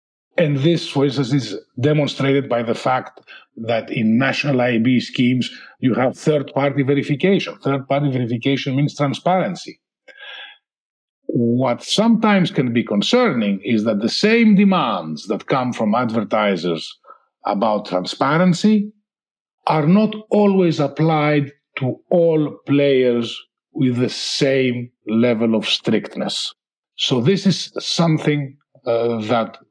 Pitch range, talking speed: 120-170 Hz, 115 wpm